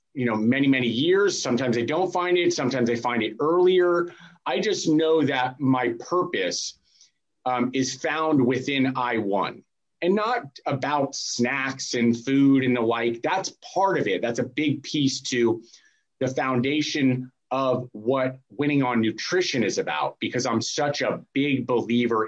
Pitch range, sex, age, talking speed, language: 120-150 Hz, male, 30-49, 160 wpm, English